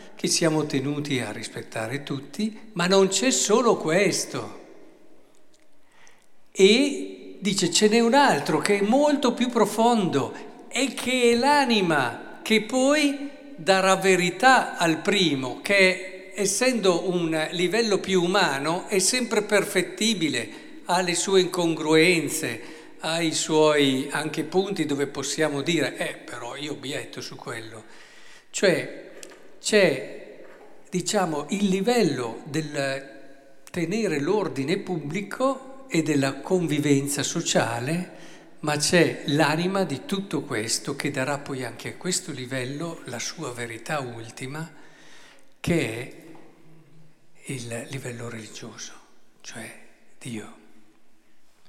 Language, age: Italian, 50-69